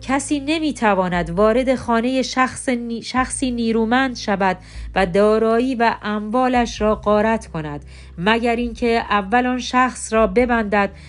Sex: female